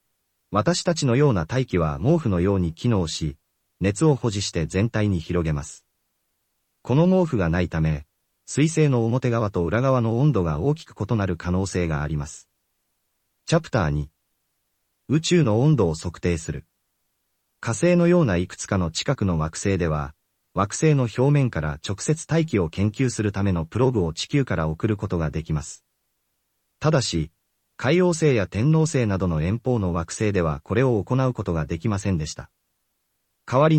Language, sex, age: Japanese, male, 40-59